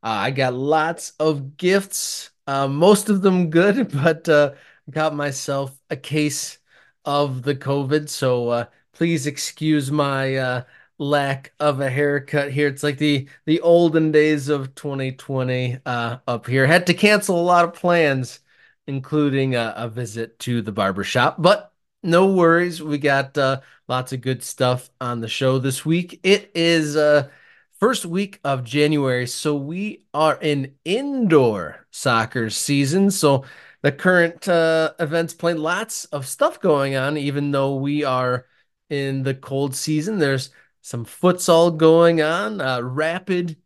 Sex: male